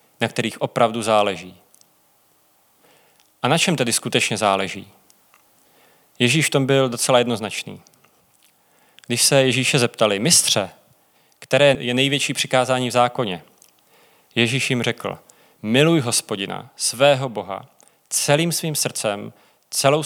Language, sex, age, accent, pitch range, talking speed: Czech, male, 30-49, native, 110-135 Hz, 115 wpm